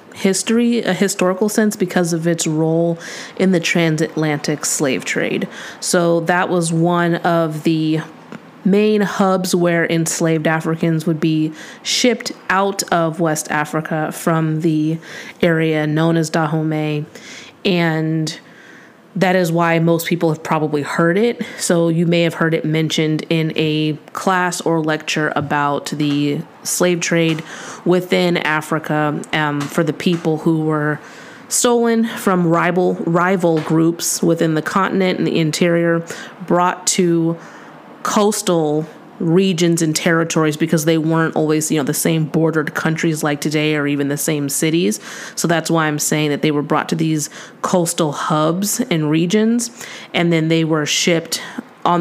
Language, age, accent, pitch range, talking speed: English, 30-49, American, 155-185 Hz, 145 wpm